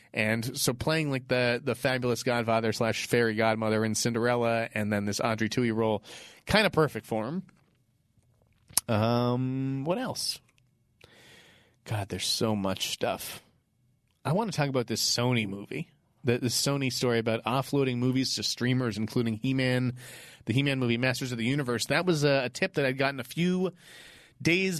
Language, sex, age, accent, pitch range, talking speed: English, male, 30-49, American, 115-140 Hz, 165 wpm